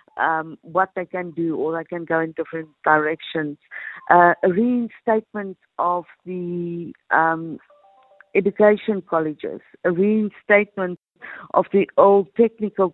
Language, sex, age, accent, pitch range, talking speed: English, female, 50-69, Indian, 170-210 Hz, 120 wpm